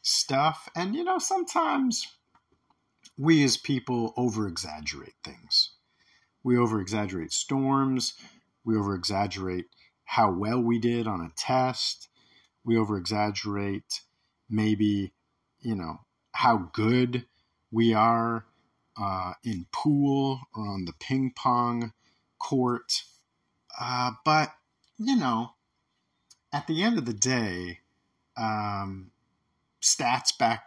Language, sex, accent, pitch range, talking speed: English, male, American, 95-125 Hz, 110 wpm